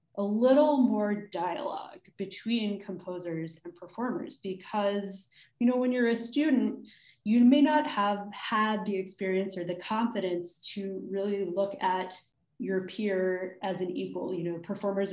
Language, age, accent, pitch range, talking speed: English, 20-39, American, 185-225 Hz, 145 wpm